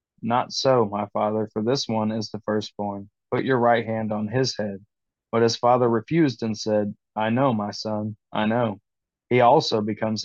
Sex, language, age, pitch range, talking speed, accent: male, English, 20-39, 105-120 Hz, 185 wpm, American